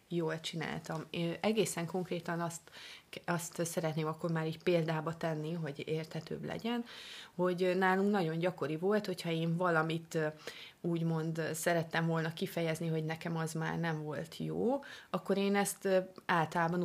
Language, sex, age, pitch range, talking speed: Hungarian, female, 30-49, 165-195 Hz, 140 wpm